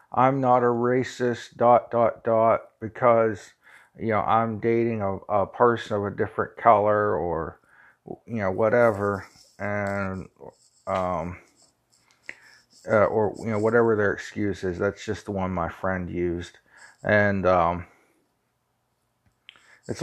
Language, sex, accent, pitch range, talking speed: English, male, American, 95-115 Hz, 130 wpm